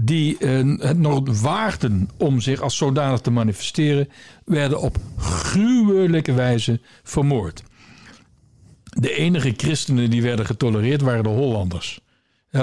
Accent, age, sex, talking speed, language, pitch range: Dutch, 60-79, male, 125 wpm, Dutch, 115-150 Hz